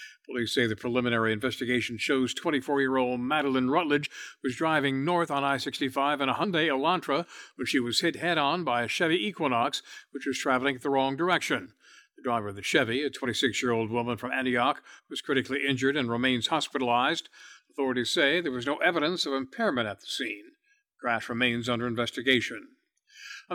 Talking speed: 170 wpm